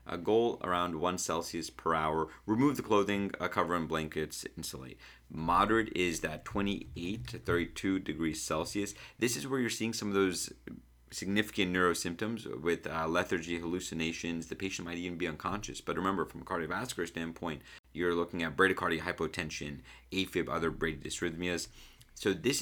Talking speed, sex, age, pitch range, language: 160 wpm, male, 30-49, 80-100 Hz, English